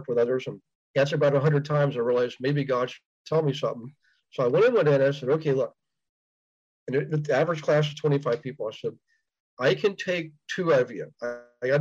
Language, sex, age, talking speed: English, male, 40-59, 220 wpm